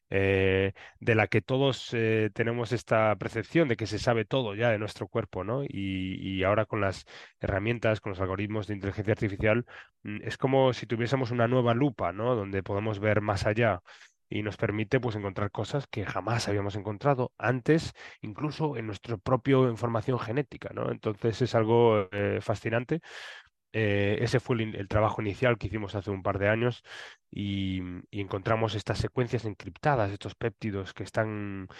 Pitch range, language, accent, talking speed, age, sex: 100-120 Hz, Spanish, Spanish, 170 wpm, 20-39, male